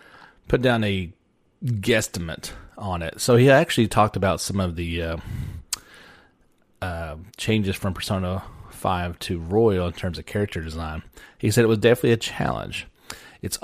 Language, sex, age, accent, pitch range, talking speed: English, male, 30-49, American, 90-115 Hz, 155 wpm